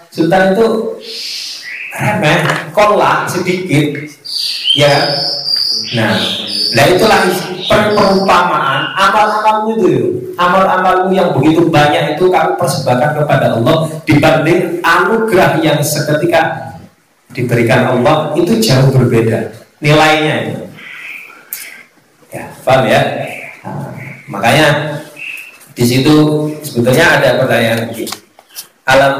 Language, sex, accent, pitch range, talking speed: Indonesian, male, native, 120-170 Hz, 85 wpm